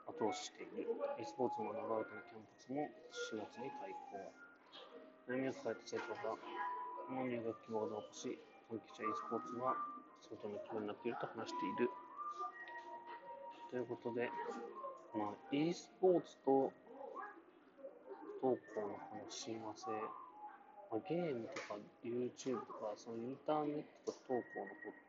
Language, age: Japanese, 30-49